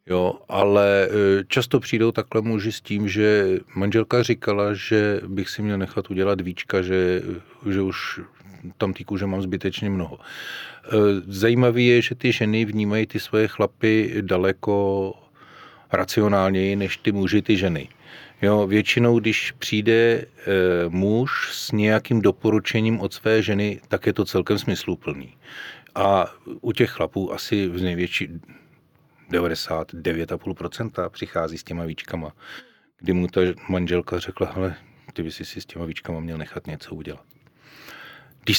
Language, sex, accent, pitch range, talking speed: Czech, male, native, 90-110 Hz, 135 wpm